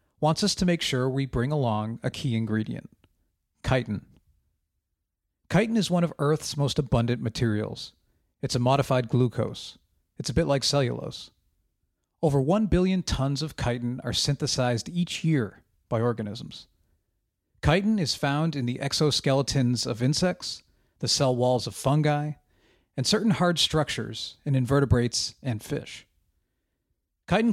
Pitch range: 110-145 Hz